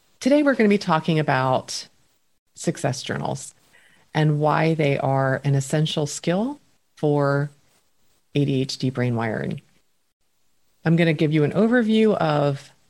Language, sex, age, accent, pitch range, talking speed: English, female, 40-59, American, 135-165 Hz, 130 wpm